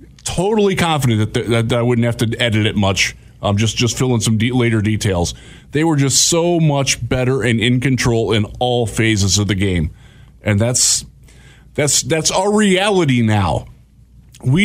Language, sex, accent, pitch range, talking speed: English, male, American, 115-150 Hz, 180 wpm